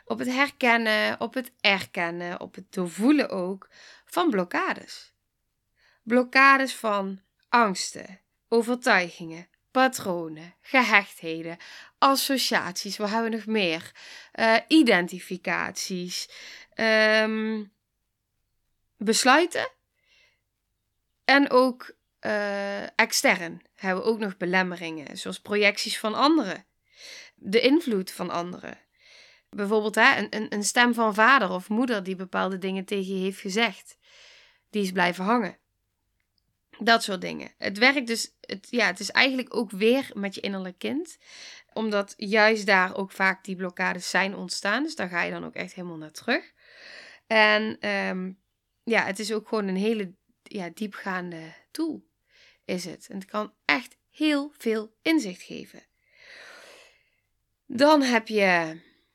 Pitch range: 190-245 Hz